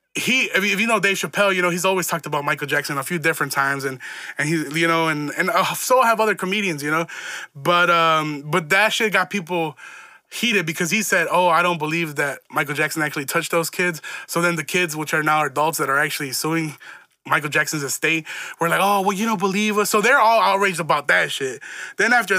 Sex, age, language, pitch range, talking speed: male, 20-39, English, 155-195 Hz, 230 wpm